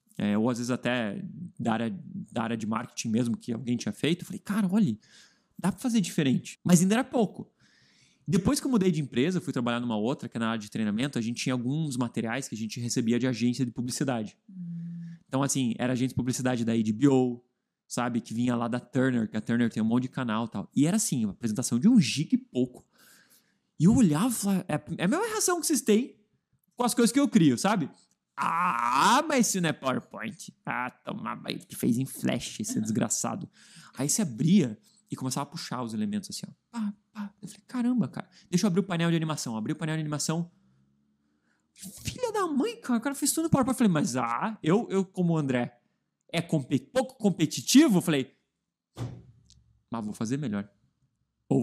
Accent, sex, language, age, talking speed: Brazilian, male, Portuguese, 20-39, 215 wpm